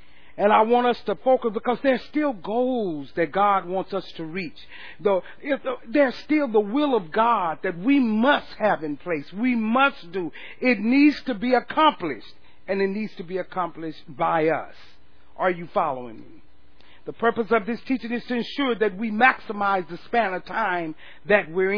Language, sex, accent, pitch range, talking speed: English, male, American, 185-245 Hz, 180 wpm